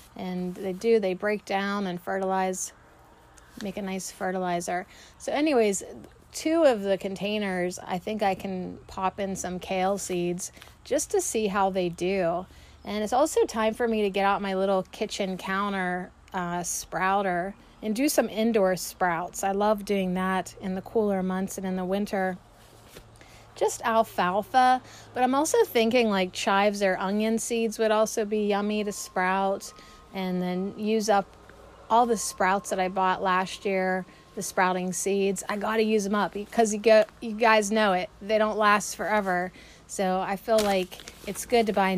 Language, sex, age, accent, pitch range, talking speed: English, female, 30-49, American, 190-220 Hz, 175 wpm